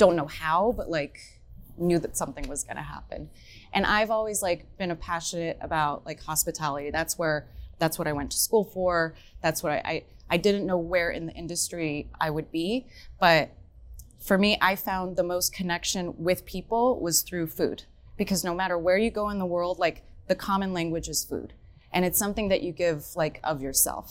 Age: 20-39